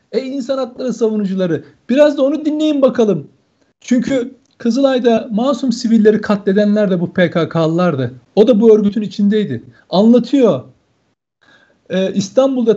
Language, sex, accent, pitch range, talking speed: Turkish, male, native, 195-235 Hz, 115 wpm